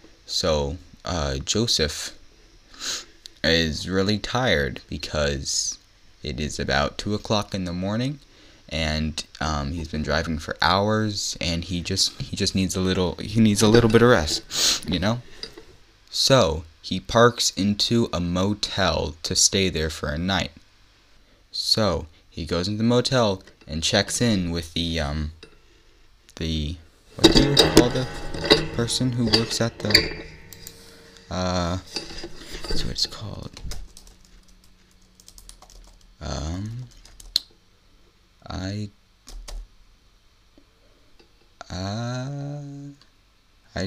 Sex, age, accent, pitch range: male, 20-39, American, 85-110 Hz